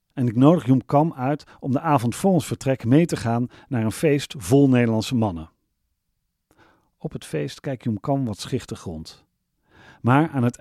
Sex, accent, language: male, Dutch, Dutch